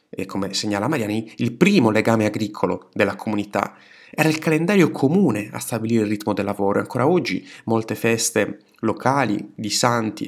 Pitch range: 105-145 Hz